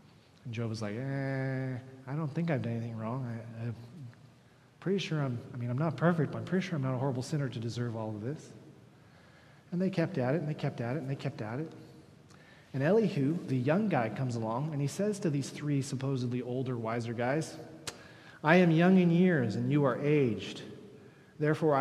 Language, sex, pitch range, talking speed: English, male, 115-145 Hz, 210 wpm